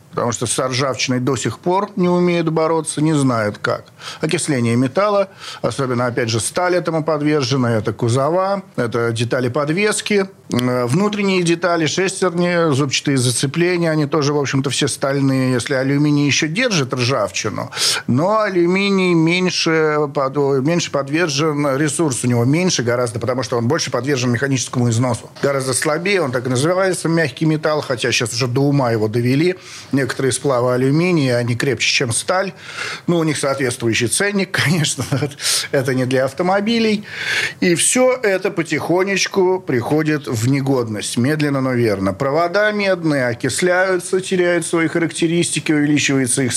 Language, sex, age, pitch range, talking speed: Russian, male, 50-69, 130-170 Hz, 140 wpm